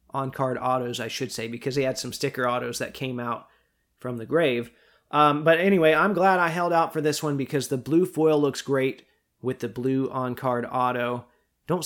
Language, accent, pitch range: English, American, 125-160 Hz